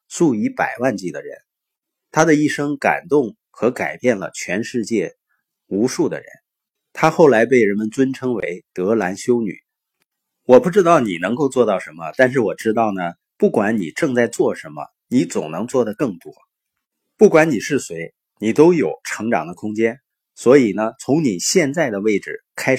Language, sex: Chinese, male